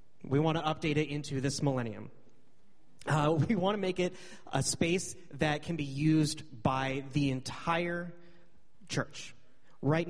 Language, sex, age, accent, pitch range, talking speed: English, male, 30-49, American, 125-155 Hz, 150 wpm